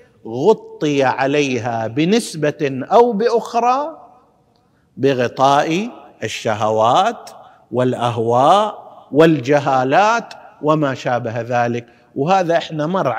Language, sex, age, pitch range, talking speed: Arabic, male, 50-69, 130-210 Hz, 70 wpm